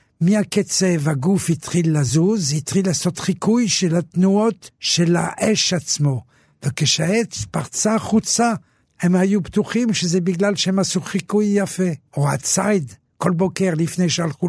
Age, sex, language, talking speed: 60-79, male, Hebrew, 125 wpm